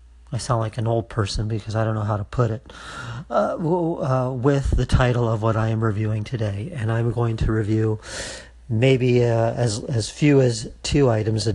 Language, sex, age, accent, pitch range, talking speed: English, male, 40-59, American, 105-125 Hz, 205 wpm